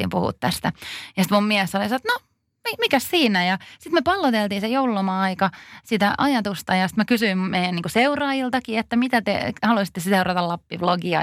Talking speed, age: 170 wpm, 30-49